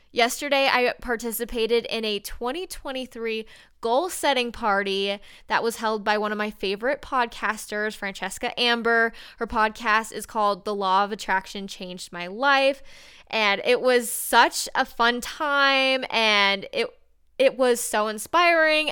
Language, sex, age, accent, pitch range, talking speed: English, female, 10-29, American, 210-260 Hz, 135 wpm